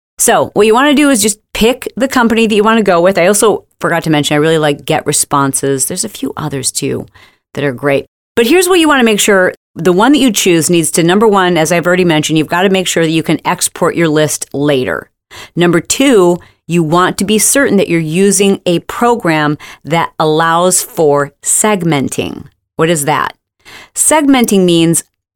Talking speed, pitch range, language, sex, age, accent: 200 wpm, 155-205 Hz, English, female, 40-59, American